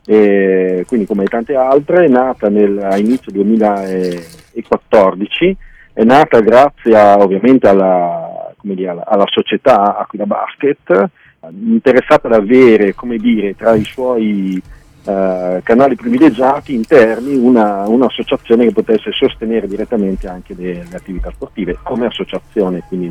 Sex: male